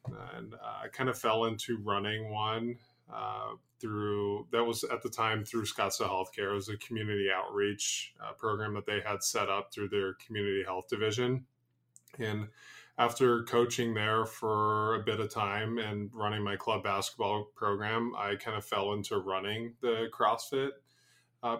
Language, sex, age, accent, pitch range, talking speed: English, male, 20-39, American, 105-120 Hz, 165 wpm